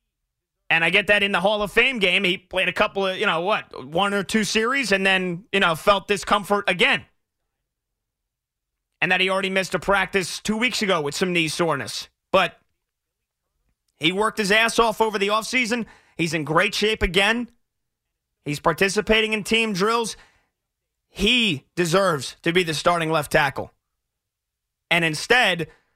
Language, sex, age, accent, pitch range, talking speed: English, male, 30-49, American, 165-210 Hz, 165 wpm